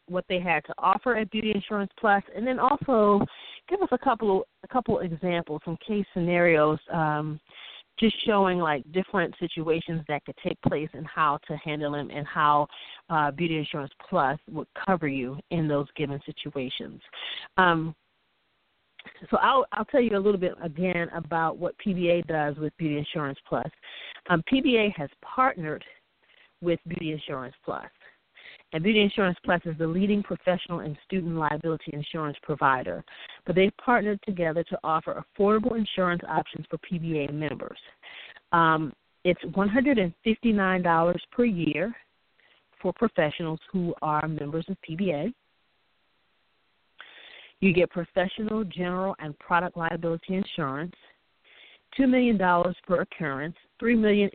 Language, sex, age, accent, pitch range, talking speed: English, female, 40-59, American, 155-200 Hz, 140 wpm